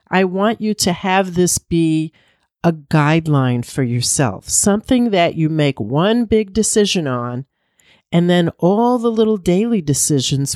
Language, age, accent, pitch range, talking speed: English, 50-69, American, 145-200 Hz, 150 wpm